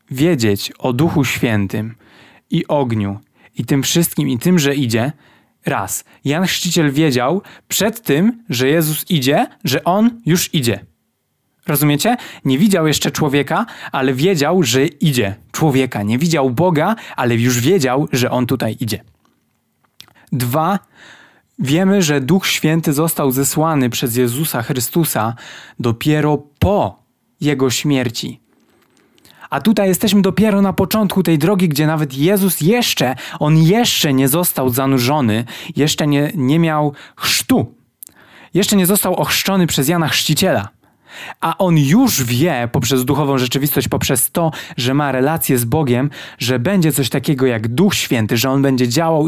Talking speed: 140 wpm